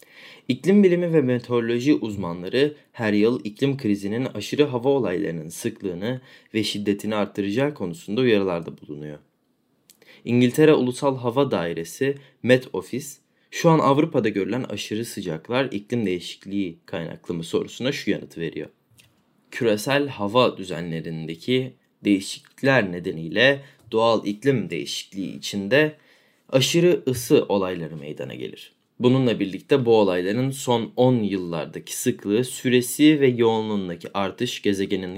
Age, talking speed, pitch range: 30-49, 115 wpm, 100-130 Hz